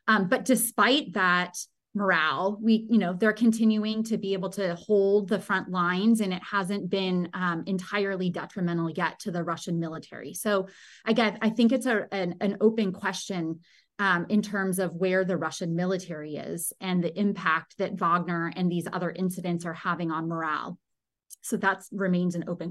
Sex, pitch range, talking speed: female, 180-210 Hz, 175 wpm